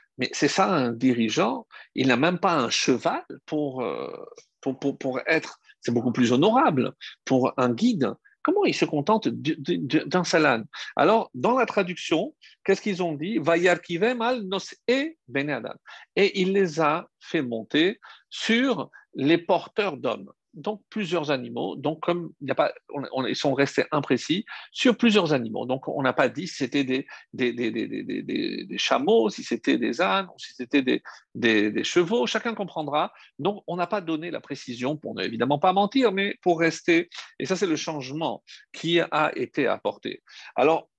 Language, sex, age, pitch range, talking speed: French, male, 50-69, 140-220 Hz, 175 wpm